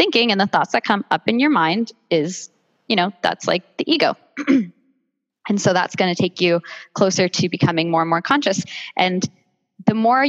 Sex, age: female, 10-29